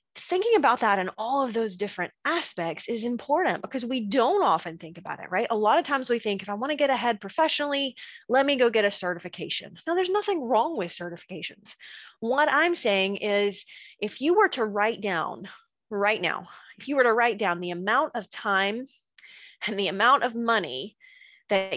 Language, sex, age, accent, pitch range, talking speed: English, female, 30-49, American, 195-265 Hz, 200 wpm